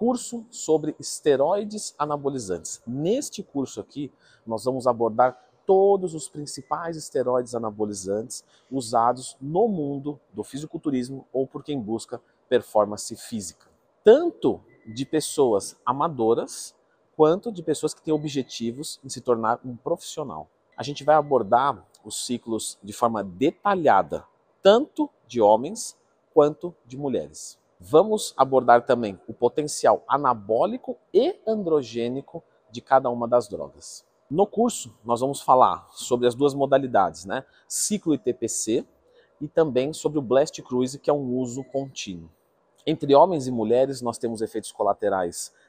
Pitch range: 115-155 Hz